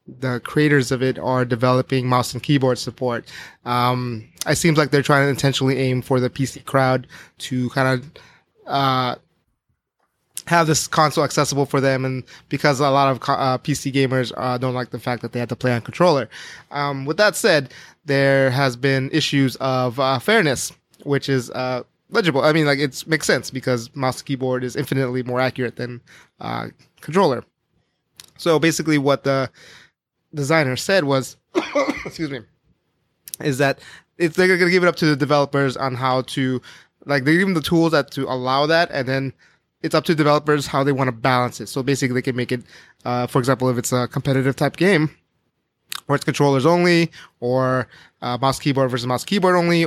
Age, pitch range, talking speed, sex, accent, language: 20-39, 125-150 Hz, 190 wpm, male, American, English